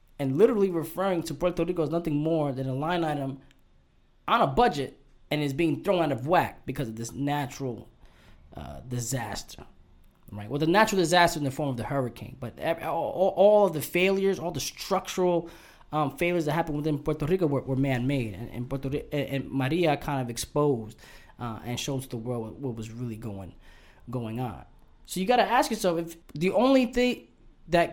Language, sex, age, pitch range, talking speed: English, male, 20-39, 130-170 Hz, 190 wpm